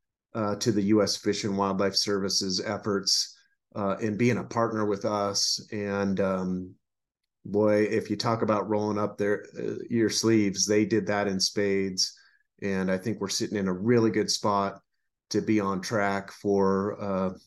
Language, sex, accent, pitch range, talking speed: English, male, American, 100-115 Hz, 170 wpm